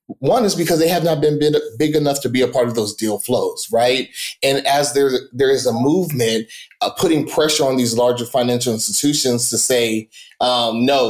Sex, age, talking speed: male, 20-39, 200 wpm